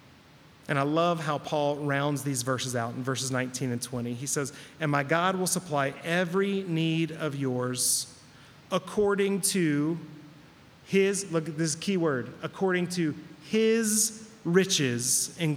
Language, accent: English, American